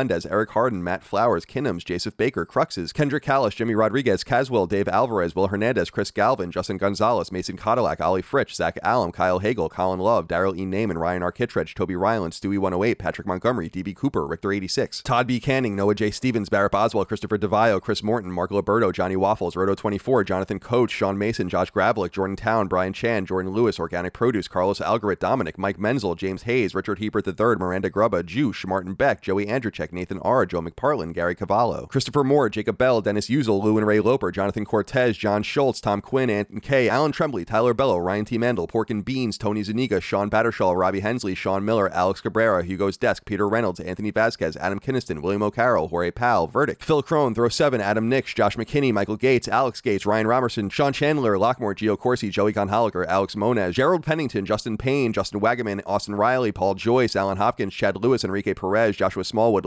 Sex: male